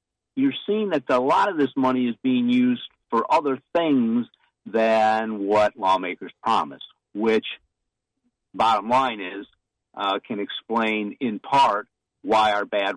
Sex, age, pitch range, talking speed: male, 50-69, 105-130 Hz, 140 wpm